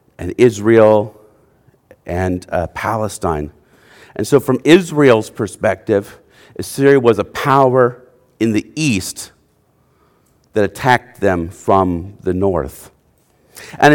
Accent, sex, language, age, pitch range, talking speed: American, male, English, 50-69, 105-170 Hz, 105 wpm